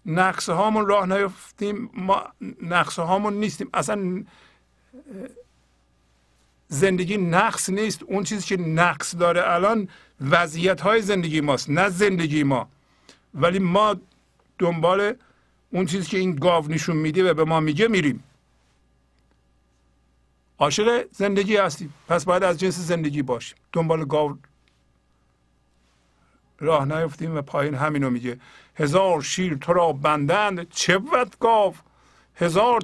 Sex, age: male, 50-69